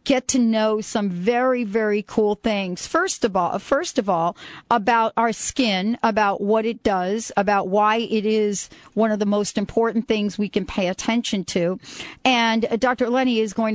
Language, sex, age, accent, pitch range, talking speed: English, female, 40-59, American, 205-245 Hz, 180 wpm